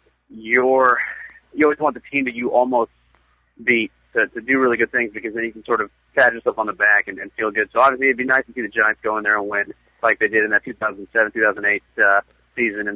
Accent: American